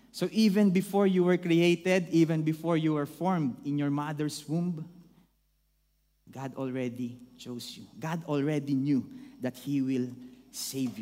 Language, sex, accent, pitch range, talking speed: English, male, Filipino, 125-155 Hz, 140 wpm